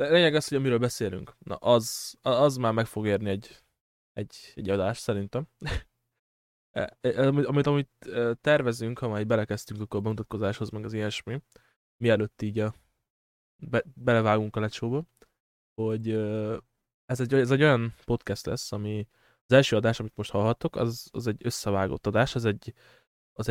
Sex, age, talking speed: male, 20-39, 155 wpm